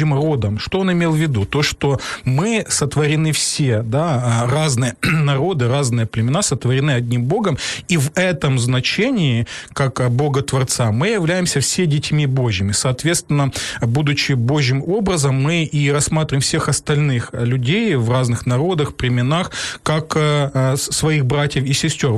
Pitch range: 130-155 Hz